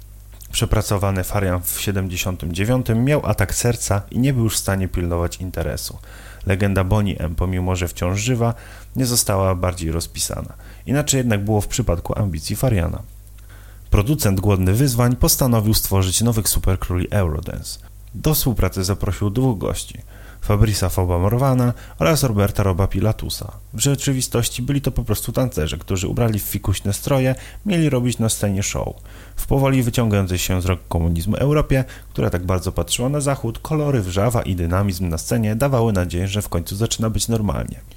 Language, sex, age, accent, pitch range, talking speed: Polish, male, 30-49, native, 95-115 Hz, 155 wpm